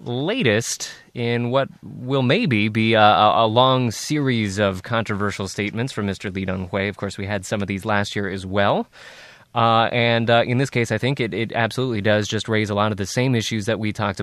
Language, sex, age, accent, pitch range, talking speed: English, male, 20-39, American, 110-150 Hz, 215 wpm